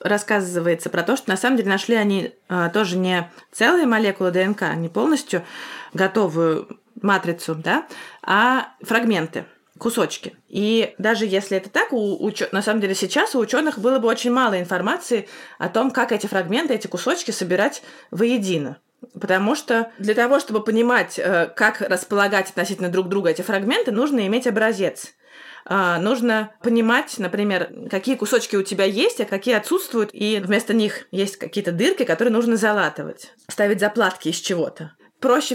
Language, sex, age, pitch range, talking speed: Russian, female, 20-39, 195-250 Hz, 155 wpm